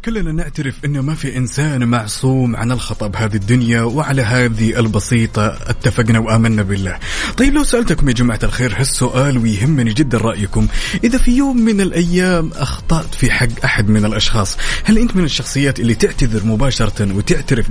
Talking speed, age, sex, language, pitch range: 155 wpm, 30-49, male, Arabic, 110-135 Hz